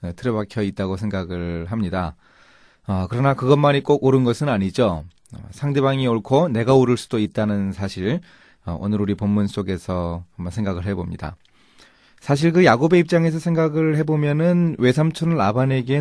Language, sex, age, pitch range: Korean, male, 30-49, 100-140 Hz